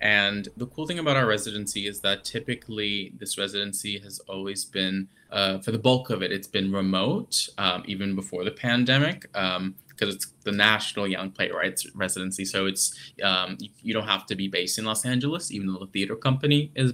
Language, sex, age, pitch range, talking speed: English, male, 20-39, 95-110 Hz, 195 wpm